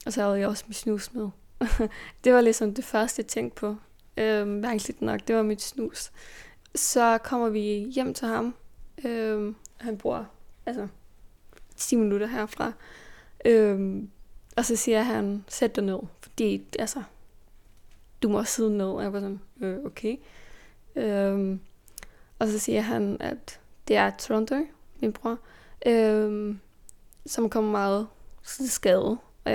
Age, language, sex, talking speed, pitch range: 20-39, Danish, female, 150 wpm, 205-235 Hz